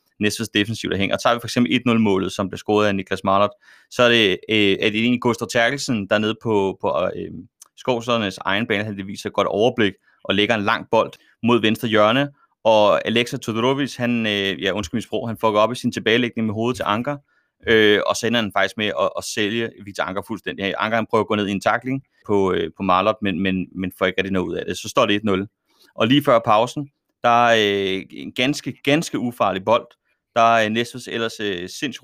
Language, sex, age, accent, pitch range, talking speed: Danish, male, 30-49, native, 100-120 Hz, 225 wpm